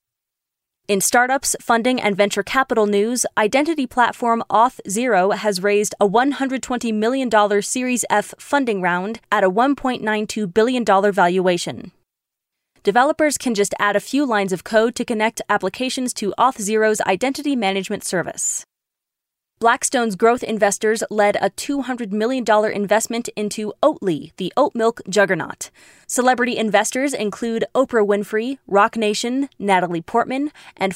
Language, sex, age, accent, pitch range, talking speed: English, female, 20-39, American, 205-255 Hz, 125 wpm